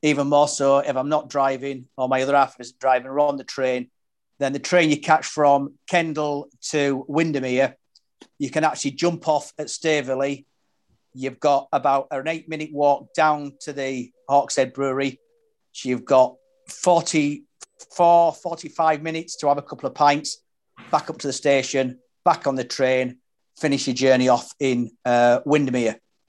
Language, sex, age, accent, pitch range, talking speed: English, male, 40-59, British, 130-155 Hz, 160 wpm